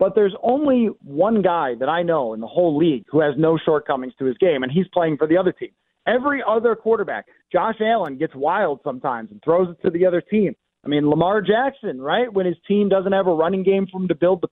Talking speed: 245 wpm